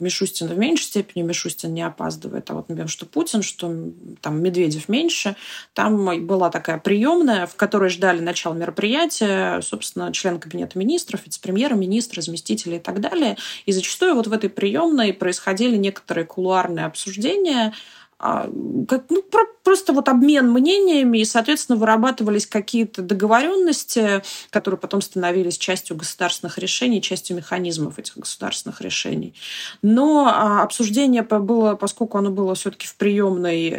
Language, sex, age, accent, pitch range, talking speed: Russian, female, 20-39, native, 175-240 Hz, 135 wpm